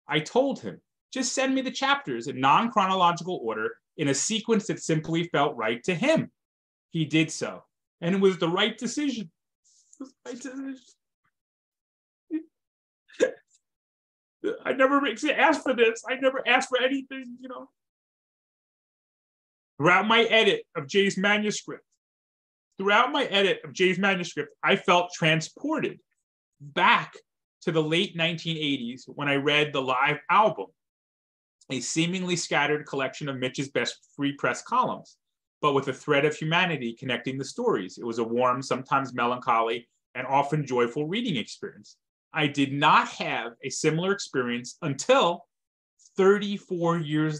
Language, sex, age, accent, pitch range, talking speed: English, male, 30-49, American, 135-215 Hz, 135 wpm